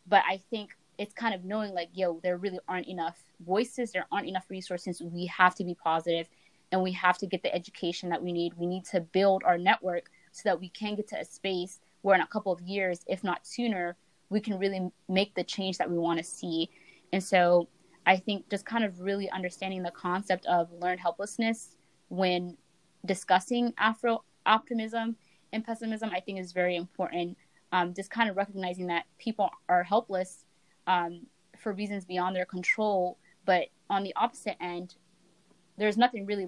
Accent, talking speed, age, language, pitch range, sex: American, 190 wpm, 20-39, English, 175-200 Hz, female